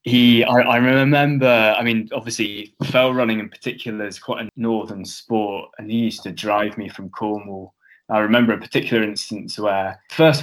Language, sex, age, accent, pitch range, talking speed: English, male, 20-39, British, 100-120 Hz, 180 wpm